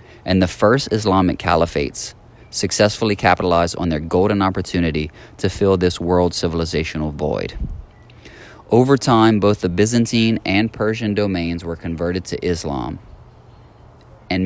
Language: English